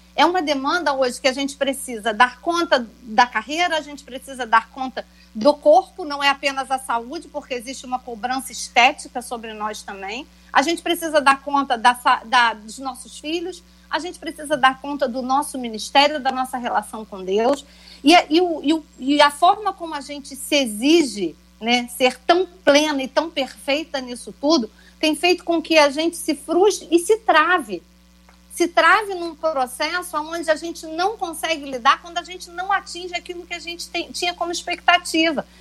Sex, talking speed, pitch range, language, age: female, 180 wpm, 255-330 Hz, Portuguese, 40-59